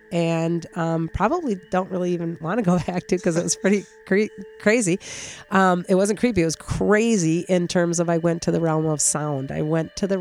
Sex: female